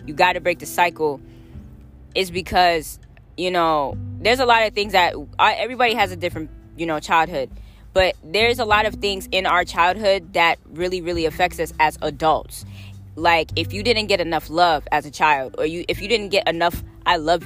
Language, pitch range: English, 155-215 Hz